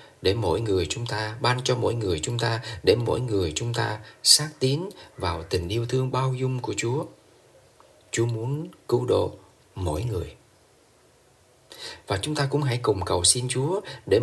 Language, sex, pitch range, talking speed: Vietnamese, male, 105-135 Hz, 175 wpm